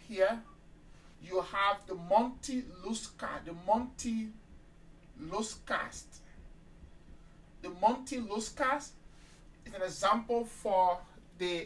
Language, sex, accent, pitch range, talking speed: English, male, Nigerian, 180-230 Hz, 85 wpm